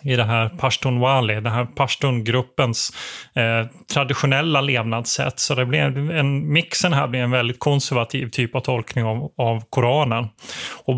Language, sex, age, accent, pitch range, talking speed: Swedish, male, 30-49, native, 125-145 Hz, 150 wpm